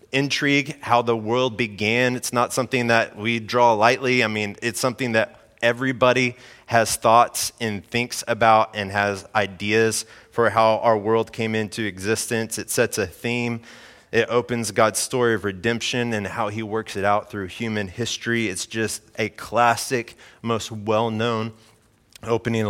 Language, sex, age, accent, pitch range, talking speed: English, male, 20-39, American, 110-130 Hz, 155 wpm